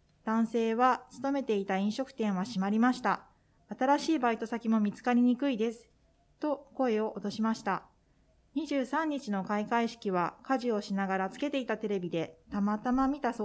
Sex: female